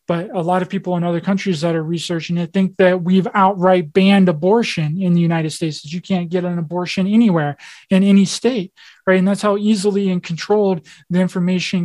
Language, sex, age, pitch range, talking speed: English, male, 20-39, 175-200 Hz, 205 wpm